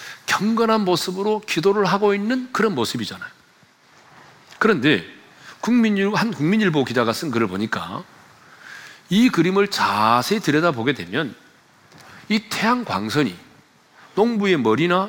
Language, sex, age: Korean, male, 40-59